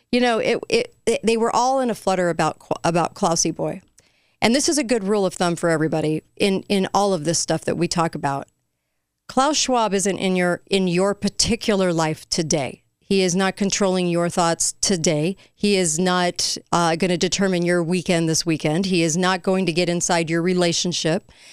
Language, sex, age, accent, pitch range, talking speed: English, female, 40-59, American, 165-210 Hz, 200 wpm